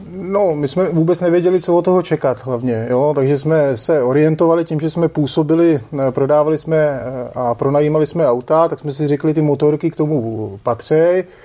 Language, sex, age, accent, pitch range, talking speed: Czech, male, 30-49, native, 130-155 Hz, 180 wpm